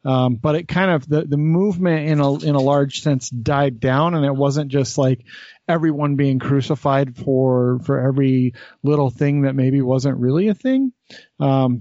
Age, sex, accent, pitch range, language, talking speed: 30-49, male, American, 125-150 Hz, English, 180 wpm